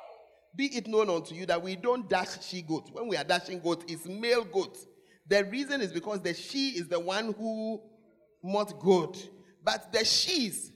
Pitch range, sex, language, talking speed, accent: 215-335 Hz, male, English, 190 wpm, Nigerian